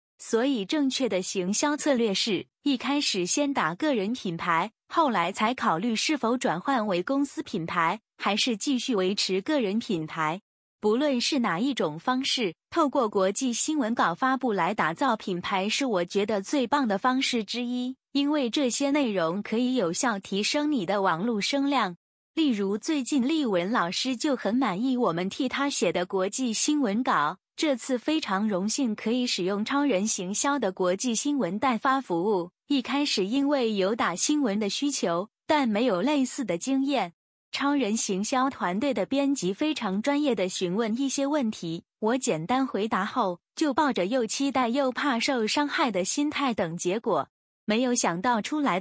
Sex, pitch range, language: female, 200-275 Hz, Chinese